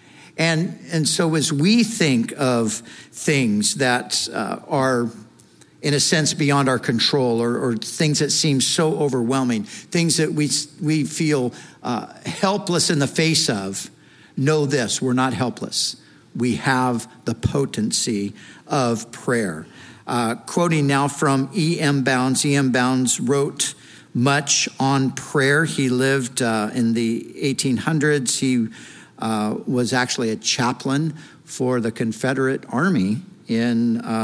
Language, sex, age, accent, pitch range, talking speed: English, male, 50-69, American, 125-155 Hz, 135 wpm